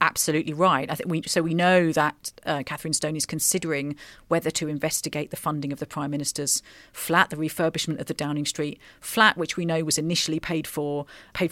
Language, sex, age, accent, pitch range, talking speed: English, female, 40-59, British, 150-180 Hz, 205 wpm